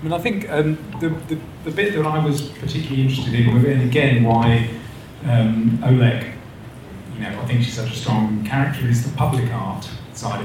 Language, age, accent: English, 30-49, British